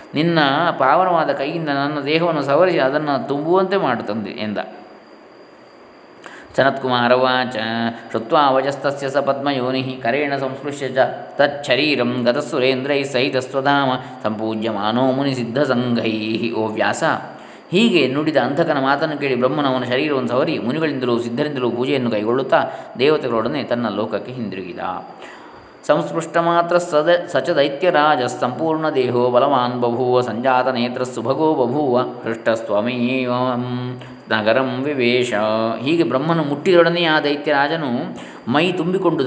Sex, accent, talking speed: male, native, 95 wpm